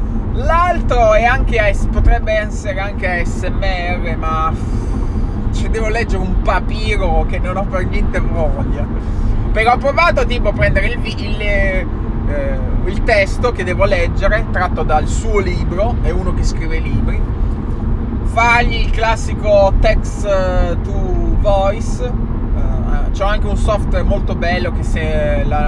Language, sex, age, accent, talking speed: Italian, male, 20-39, native, 140 wpm